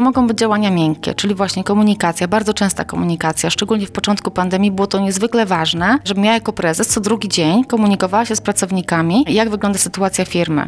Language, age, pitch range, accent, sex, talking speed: Polish, 30-49, 185-220 Hz, native, female, 185 wpm